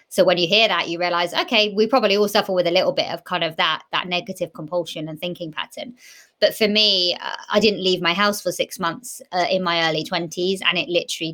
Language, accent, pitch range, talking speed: English, British, 175-215 Hz, 245 wpm